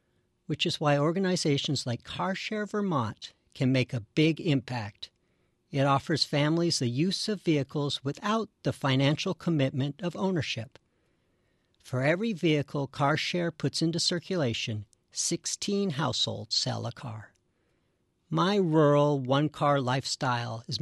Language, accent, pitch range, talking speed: English, American, 125-170 Hz, 120 wpm